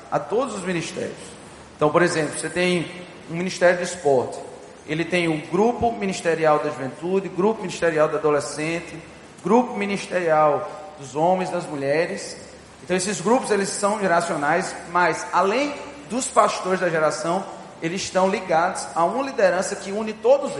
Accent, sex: Brazilian, male